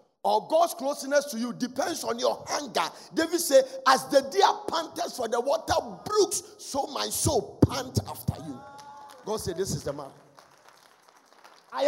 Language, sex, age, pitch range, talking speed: English, male, 50-69, 170-275 Hz, 160 wpm